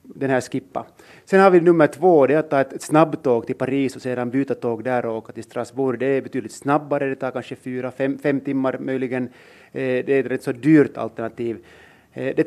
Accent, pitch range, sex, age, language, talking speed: Finnish, 115-135 Hz, male, 30-49, Swedish, 205 wpm